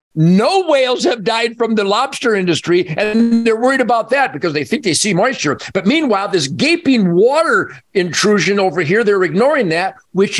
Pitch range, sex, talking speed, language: 185-250 Hz, male, 180 wpm, English